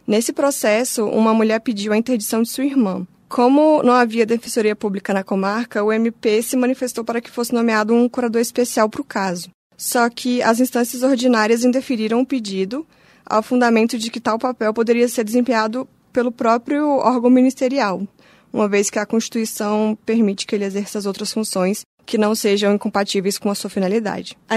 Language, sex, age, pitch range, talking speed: Portuguese, female, 20-39, 205-235 Hz, 180 wpm